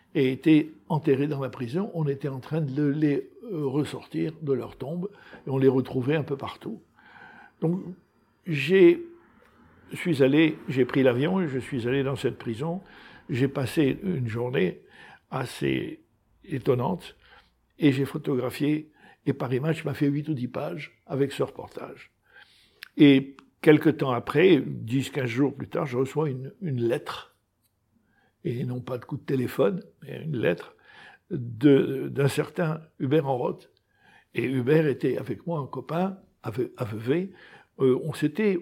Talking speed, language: 155 wpm, French